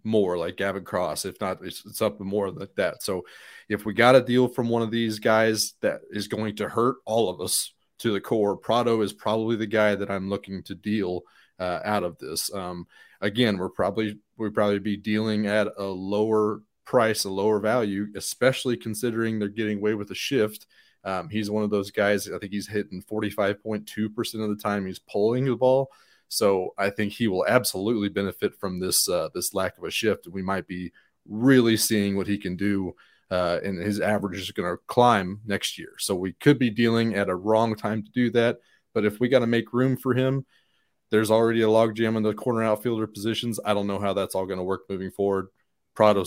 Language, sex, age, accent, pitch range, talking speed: English, male, 30-49, American, 100-115 Hz, 215 wpm